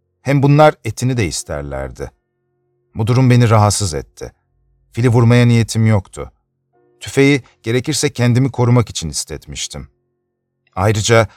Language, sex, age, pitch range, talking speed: Turkish, male, 40-59, 95-125 Hz, 110 wpm